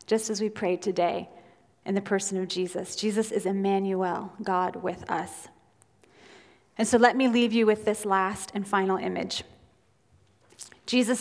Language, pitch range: English, 195-240 Hz